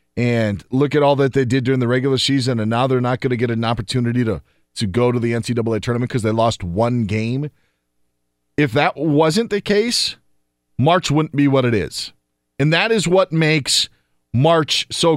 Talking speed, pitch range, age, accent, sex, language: 200 wpm, 130-185 Hz, 40-59, American, male, English